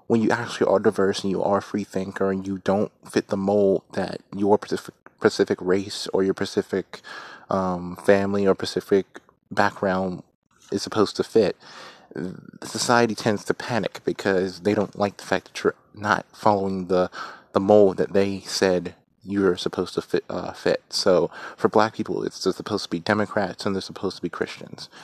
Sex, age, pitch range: male, 30-49, 95-105 Hz